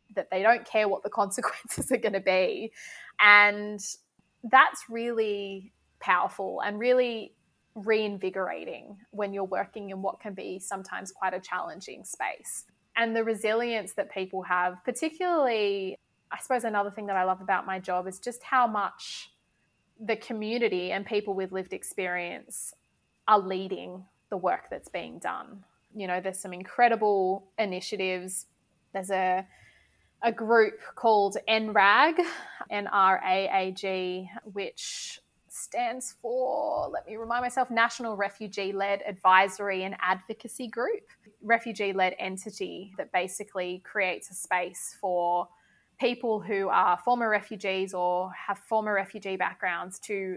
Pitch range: 190-225 Hz